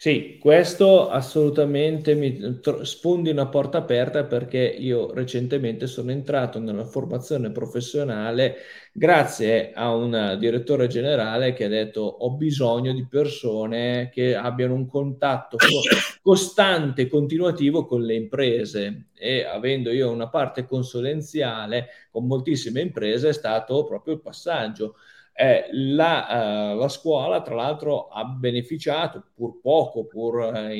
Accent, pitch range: native, 115-150 Hz